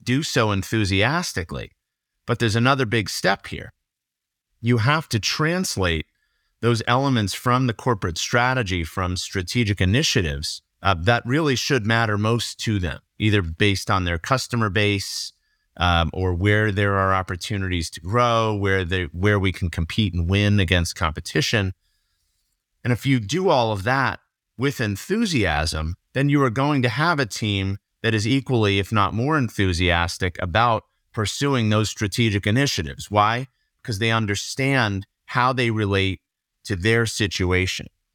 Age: 30-49